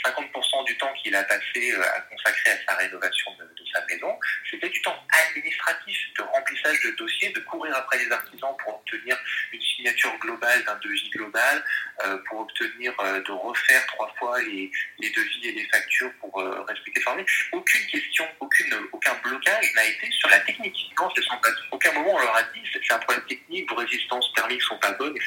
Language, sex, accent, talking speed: French, male, French, 200 wpm